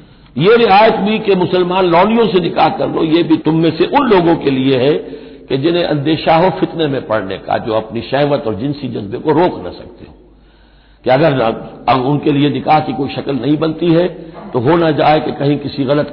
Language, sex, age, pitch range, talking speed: Hindi, male, 60-79, 130-175 Hz, 210 wpm